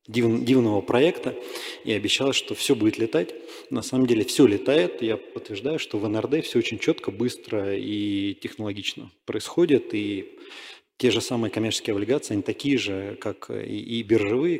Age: 30-49